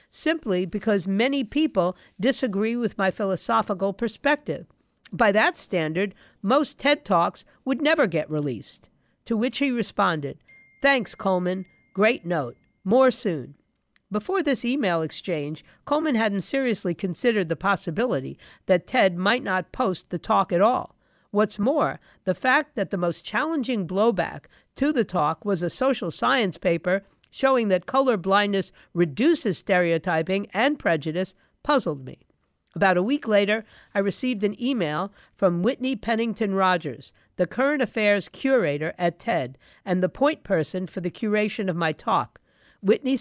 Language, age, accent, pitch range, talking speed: English, 50-69, American, 180-245 Hz, 145 wpm